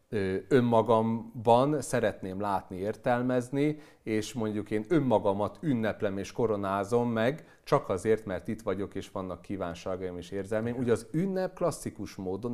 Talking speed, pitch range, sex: 130 wpm, 100-130 Hz, male